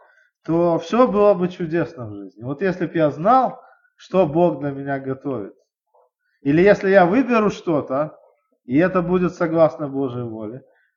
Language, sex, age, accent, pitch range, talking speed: Russian, male, 20-39, native, 150-205 Hz, 155 wpm